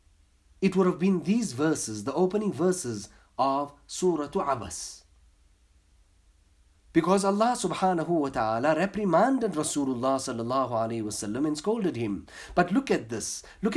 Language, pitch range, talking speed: English, 110-180 Hz, 130 wpm